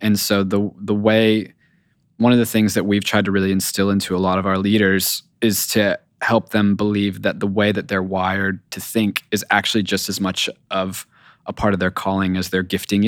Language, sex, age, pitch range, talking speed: English, male, 20-39, 95-110 Hz, 220 wpm